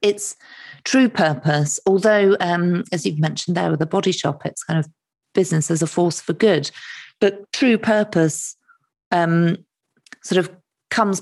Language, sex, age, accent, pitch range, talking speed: English, female, 40-59, British, 155-185 Hz, 155 wpm